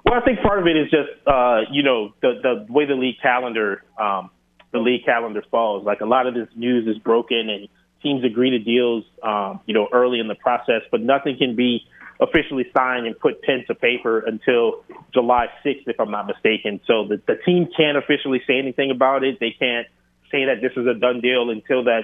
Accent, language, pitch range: American, English, 110-130 Hz